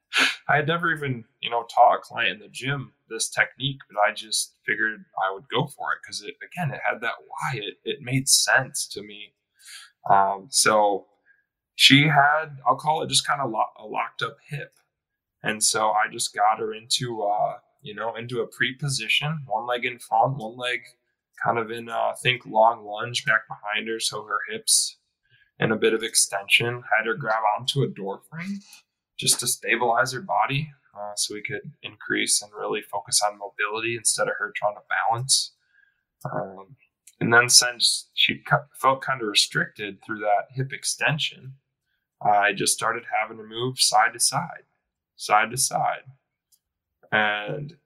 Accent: American